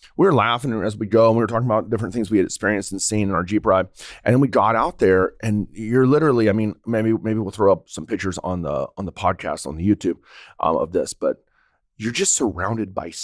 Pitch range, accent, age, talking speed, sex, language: 95-120 Hz, American, 30-49, 255 wpm, male, English